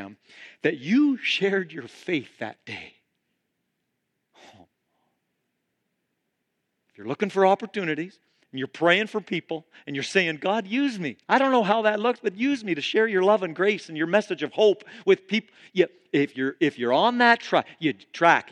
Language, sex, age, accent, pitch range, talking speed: English, male, 50-69, American, 145-220 Hz, 165 wpm